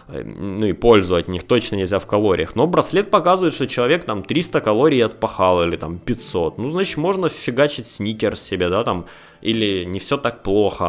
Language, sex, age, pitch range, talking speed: Russian, male, 20-39, 100-135 Hz, 180 wpm